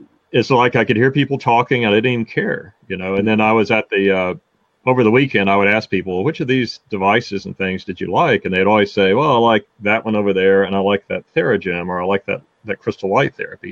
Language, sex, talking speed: English, male, 265 wpm